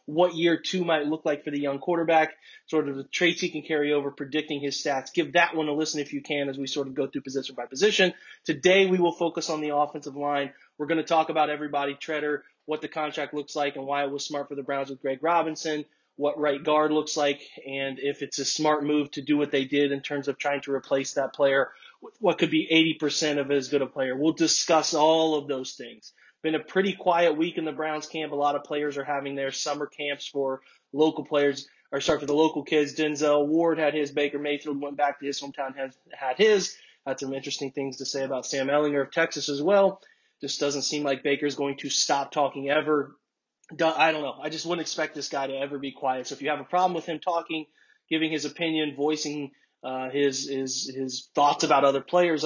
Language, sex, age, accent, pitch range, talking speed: English, male, 20-39, American, 140-155 Hz, 235 wpm